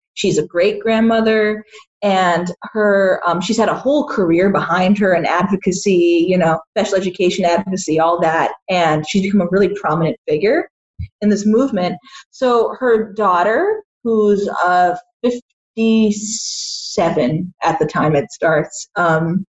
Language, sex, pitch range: English, female, 180-245 Hz